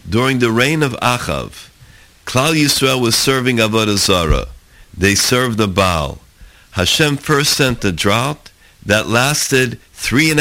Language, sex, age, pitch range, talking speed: English, male, 50-69, 100-140 Hz, 135 wpm